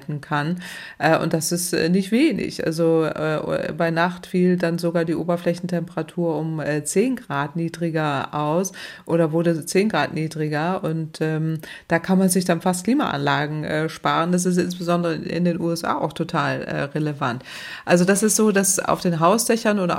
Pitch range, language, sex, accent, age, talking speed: 160-185 Hz, German, female, German, 30-49, 155 wpm